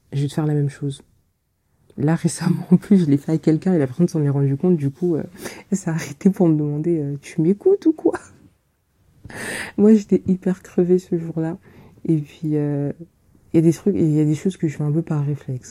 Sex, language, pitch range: female, French, 135-165 Hz